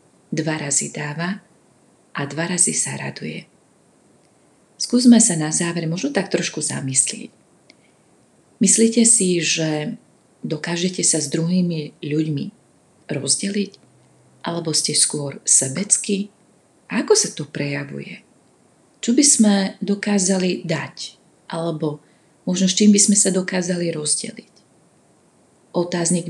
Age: 30-49